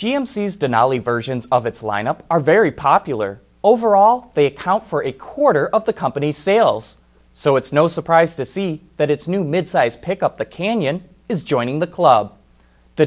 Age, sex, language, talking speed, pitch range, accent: 30-49, male, English, 170 wpm, 120-185 Hz, American